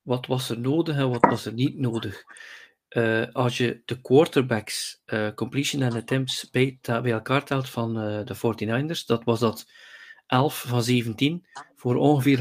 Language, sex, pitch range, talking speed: Dutch, male, 120-155 Hz, 175 wpm